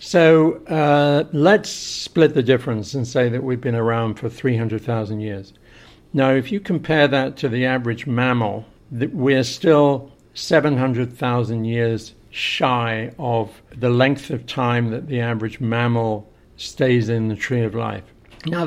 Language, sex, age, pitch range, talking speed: English, male, 60-79, 120-150 Hz, 145 wpm